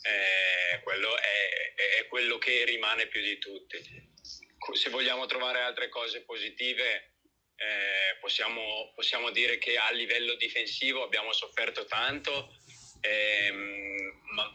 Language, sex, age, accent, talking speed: Italian, male, 30-49, native, 120 wpm